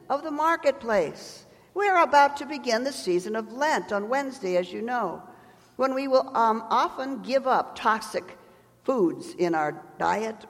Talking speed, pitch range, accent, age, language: 165 wpm, 160-235 Hz, American, 50-69, English